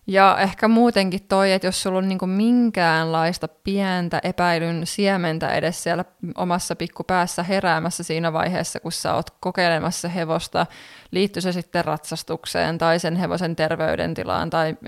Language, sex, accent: Finnish, female, native